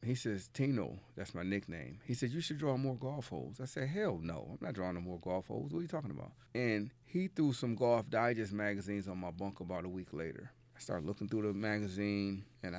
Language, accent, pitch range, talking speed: English, American, 100-125 Hz, 240 wpm